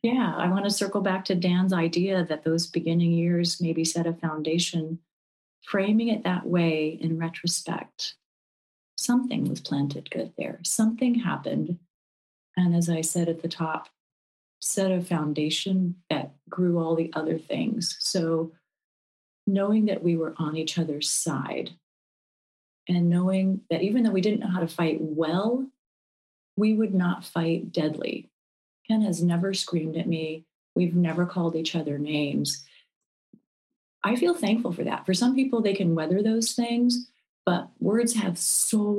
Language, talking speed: English, 155 wpm